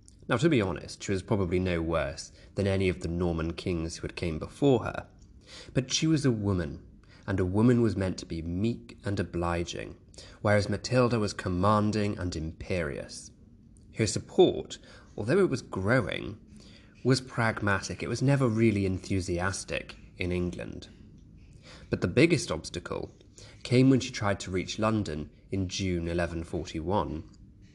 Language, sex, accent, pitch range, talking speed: English, male, British, 90-110 Hz, 150 wpm